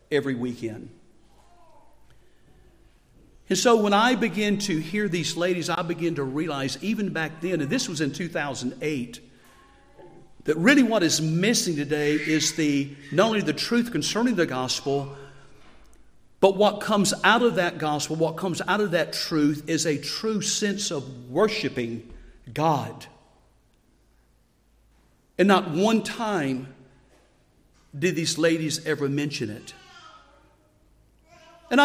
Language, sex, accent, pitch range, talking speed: English, male, American, 140-195 Hz, 130 wpm